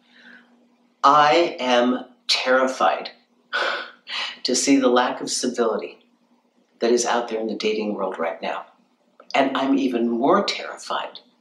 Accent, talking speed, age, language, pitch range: American, 125 wpm, 60-79, English, 120-175 Hz